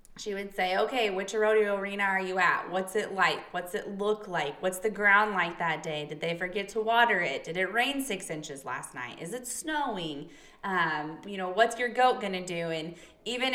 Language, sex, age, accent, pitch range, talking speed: English, female, 20-39, American, 175-215 Hz, 215 wpm